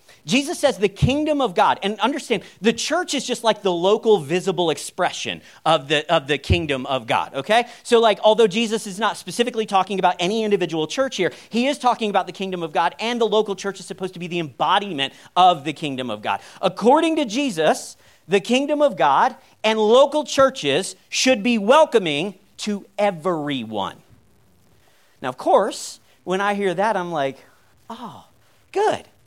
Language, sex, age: English, male, 40-59